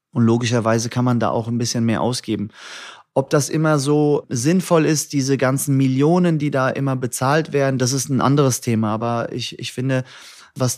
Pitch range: 130-150 Hz